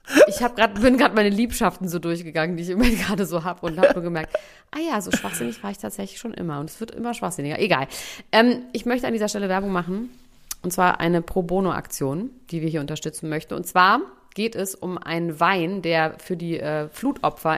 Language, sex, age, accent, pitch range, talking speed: German, female, 30-49, German, 170-225 Hz, 220 wpm